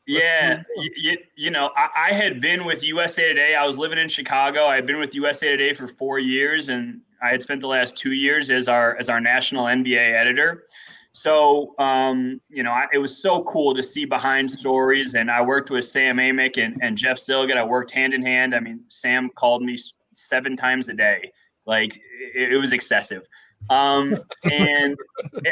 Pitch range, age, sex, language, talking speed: 130-160 Hz, 20-39, male, English, 200 wpm